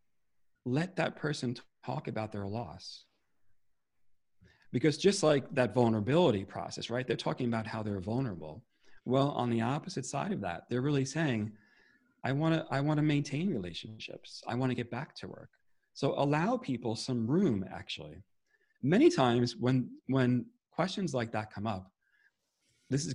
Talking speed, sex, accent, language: 155 wpm, male, American, English